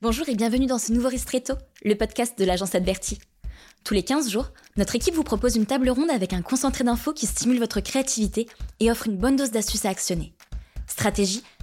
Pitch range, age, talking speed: 195-245 Hz, 20-39, 205 wpm